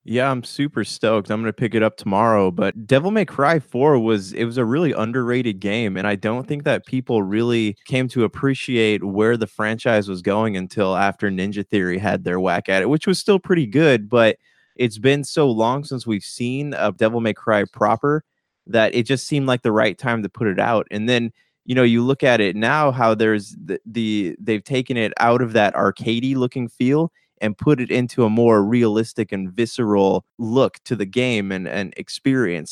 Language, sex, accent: English, male, American